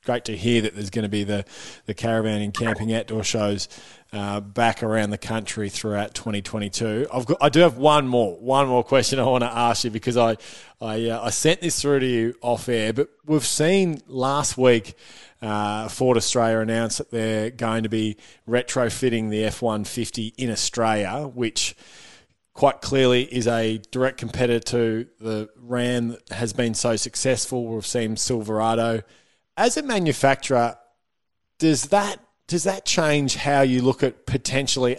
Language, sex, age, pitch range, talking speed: English, male, 20-39, 110-125 Hz, 170 wpm